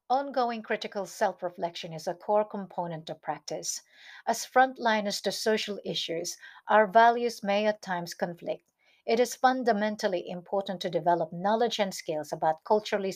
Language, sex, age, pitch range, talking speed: English, female, 50-69, 175-230 Hz, 140 wpm